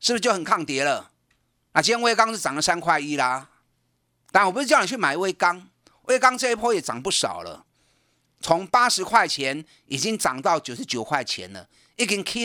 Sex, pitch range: male, 155-230 Hz